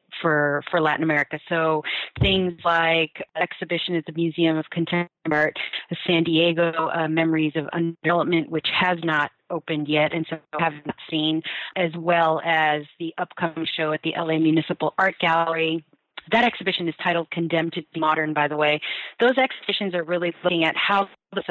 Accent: American